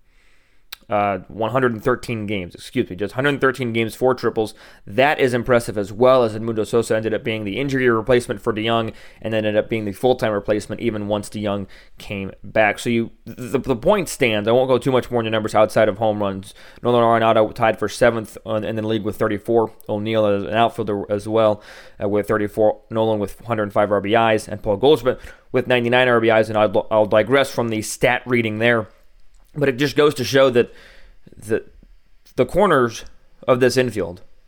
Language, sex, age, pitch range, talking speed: English, male, 20-39, 110-125 Hz, 185 wpm